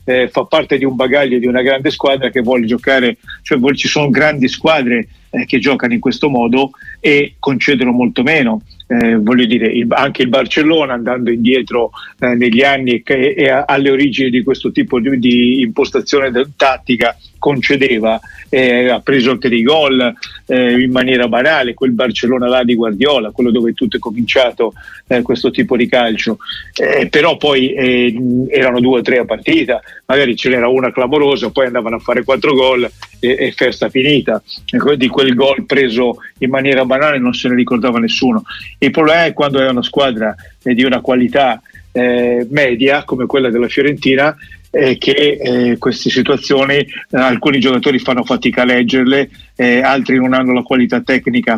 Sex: male